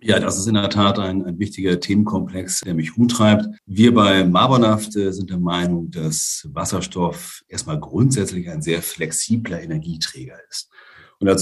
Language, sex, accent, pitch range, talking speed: German, male, German, 90-120 Hz, 160 wpm